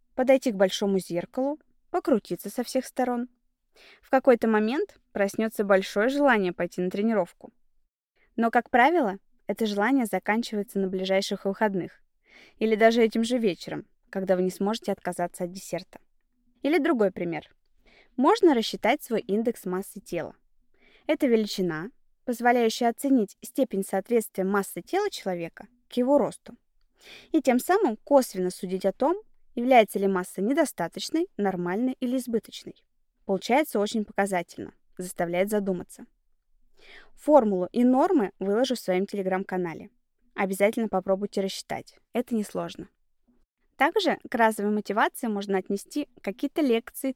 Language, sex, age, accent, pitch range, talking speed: Russian, female, 20-39, native, 195-255 Hz, 125 wpm